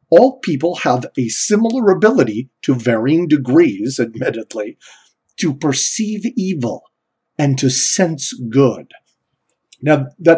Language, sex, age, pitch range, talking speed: English, male, 50-69, 125-170 Hz, 110 wpm